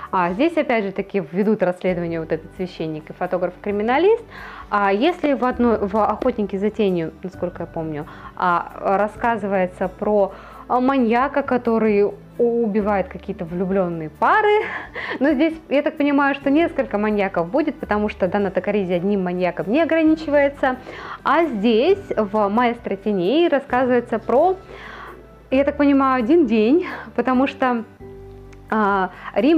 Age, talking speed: 20-39, 130 wpm